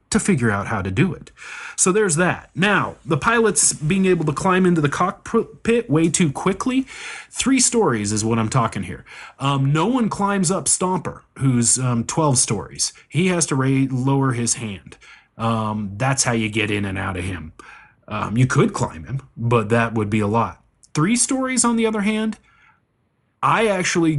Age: 30-49